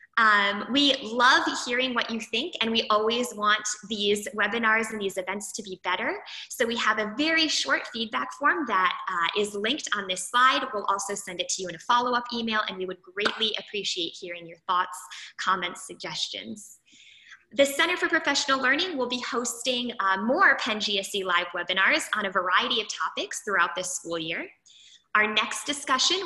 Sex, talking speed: female, 185 wpm